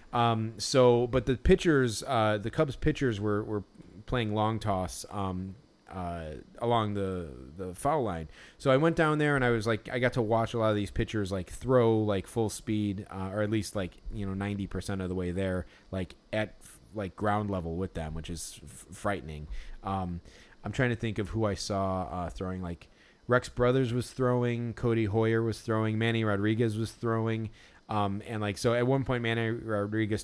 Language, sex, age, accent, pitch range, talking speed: English, male, 30-49, American, 95-115 Hz, 200 wpm